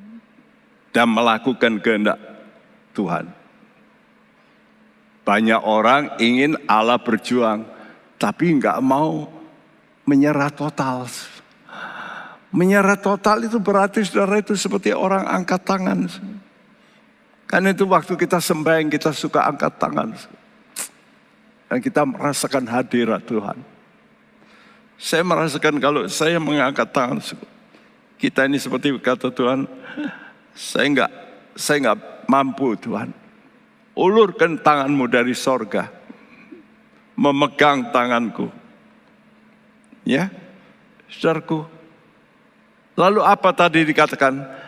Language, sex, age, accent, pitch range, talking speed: Indonesian, male, 60-79, native, 145-215 Hz, 85 wpm